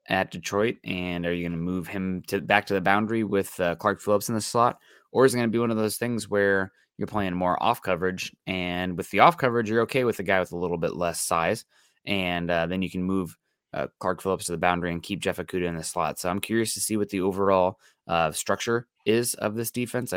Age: 20-39